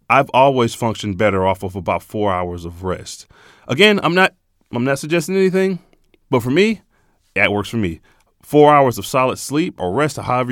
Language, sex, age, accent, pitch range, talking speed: English, male, 30-49, American, 95-125 Hz, 190 wpm